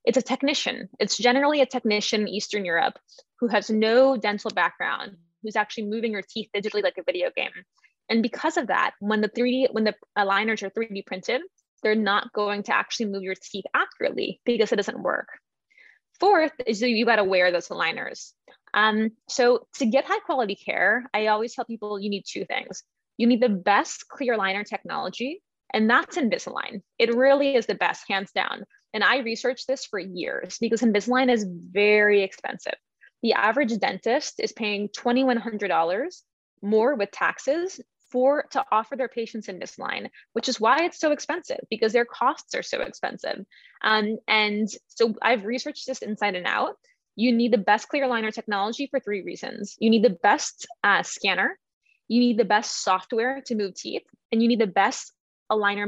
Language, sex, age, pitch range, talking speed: English, female, 10-29, 205-260 Hz, 180 wpm